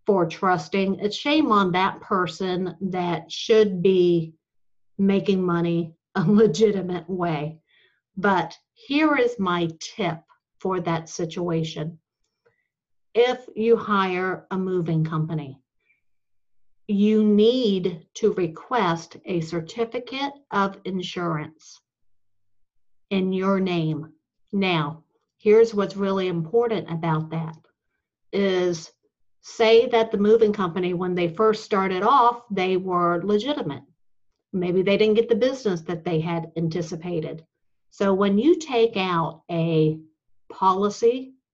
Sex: female